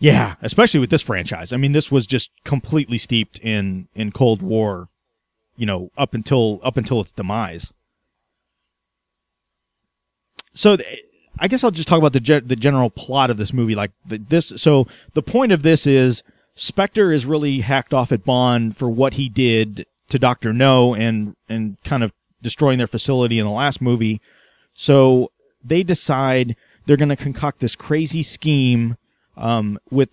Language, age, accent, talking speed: English, 30-49, American, 170 wpm